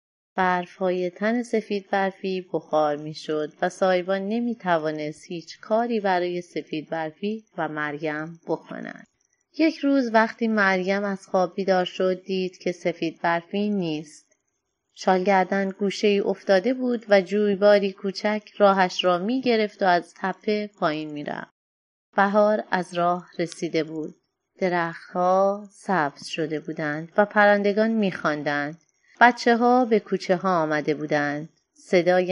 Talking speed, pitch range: 125 wpm, 165-210 Hz